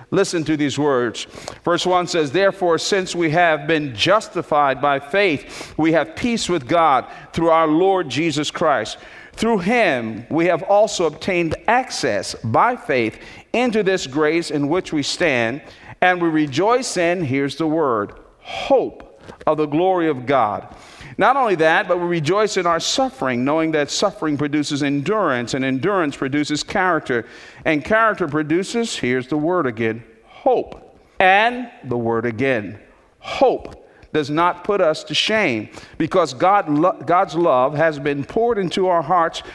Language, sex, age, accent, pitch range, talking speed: English, male, 50-69, American, 145-180 Hz, 150 wpm